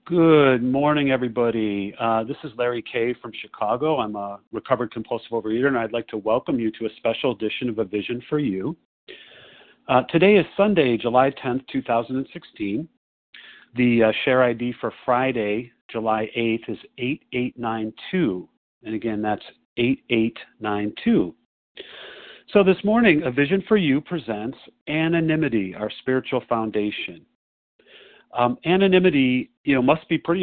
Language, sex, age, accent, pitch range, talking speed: English, male, 50-69, American, 110-135 Hz, 140 wpm